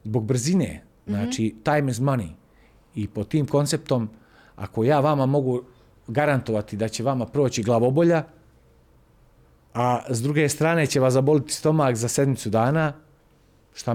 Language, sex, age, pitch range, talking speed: Croatian, male, 40-59, 115-155 Hz, 140 wpm